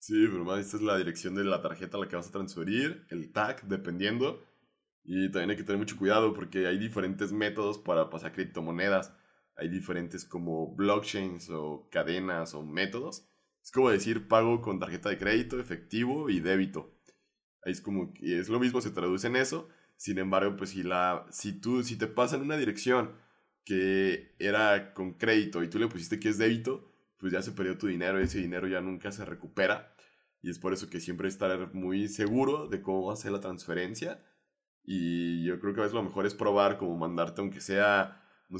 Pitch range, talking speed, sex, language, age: 90-105 Hz, 195 wpm, male, Spanish, 20-39